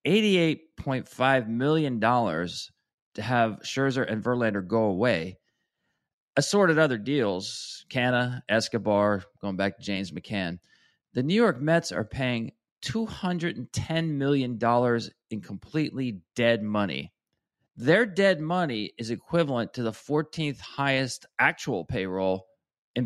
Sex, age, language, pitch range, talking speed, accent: male, 40-59, English, 115-165 Hz, 110 wpm, American